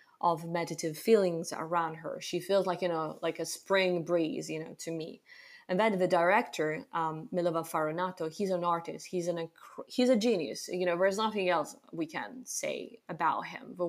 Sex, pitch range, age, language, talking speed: female, 165-205 Hz, 20-39, English, 195 wpm